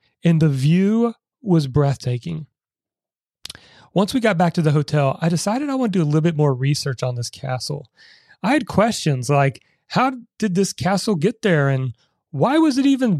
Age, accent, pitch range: 30-49, American, 140-185 Hz